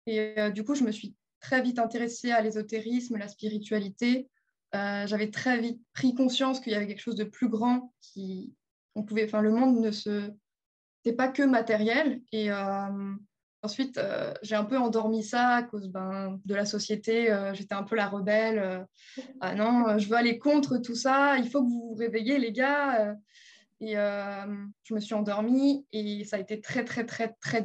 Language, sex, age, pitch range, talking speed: French, female, 20-39, 205-235 Hz, 205 wpm